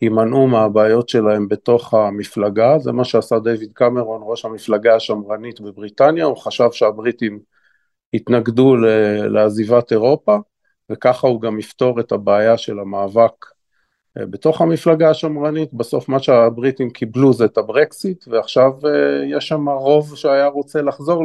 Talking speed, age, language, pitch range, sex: 125 wpm, 50-69, Hebrew, 115-145 Hz, male